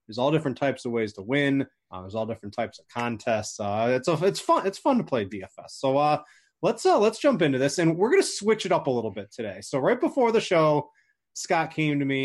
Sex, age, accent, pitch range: male, 20-39, American, 120-160 Hz